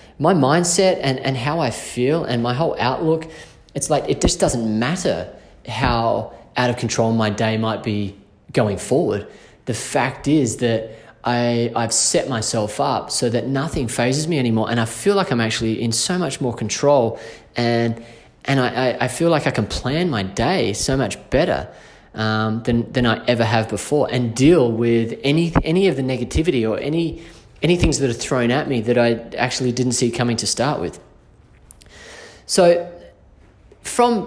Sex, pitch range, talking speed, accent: male, 115-140 Hz, 180 wpm, Australian